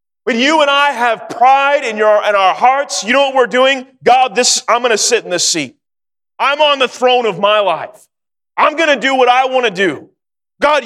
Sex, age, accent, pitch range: male, 30-49, American, 220-280 Hz